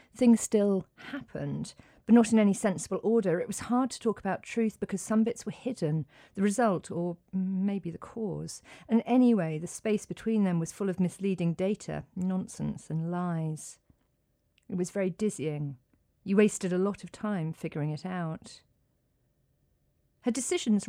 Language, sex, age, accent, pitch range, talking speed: English, female, 40-59, British, 165-205 Hz, 160 wpm